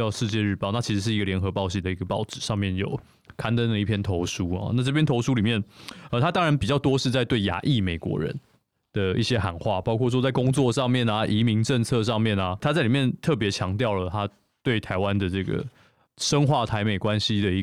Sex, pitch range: male, 100-125 Hz